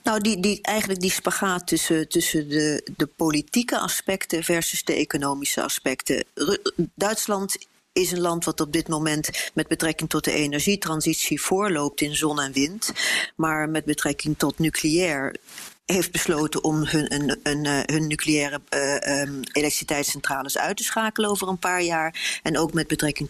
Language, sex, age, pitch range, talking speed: Dutch, female, 40-59, 150-185 Hz, 145 wpm